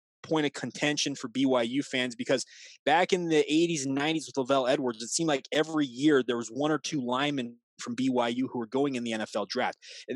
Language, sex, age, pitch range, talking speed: English, male, 20-39, 140-170 Hz, 220 wpm